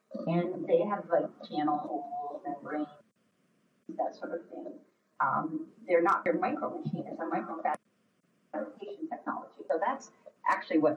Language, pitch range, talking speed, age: English, 180-285 Hz, 125 wpm, 40-59